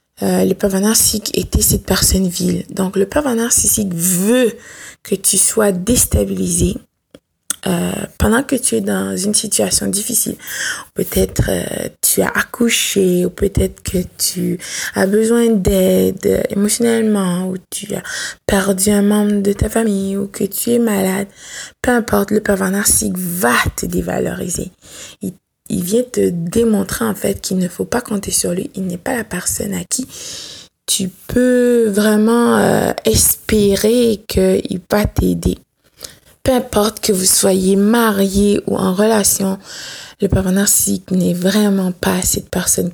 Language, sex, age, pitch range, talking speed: French, female, 20-39, 185-220 Hz, 150 wpm